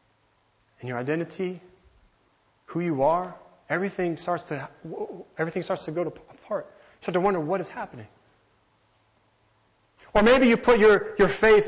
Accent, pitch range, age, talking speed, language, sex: American, 110-170 Hz, 30-49, 150 wpm, English, male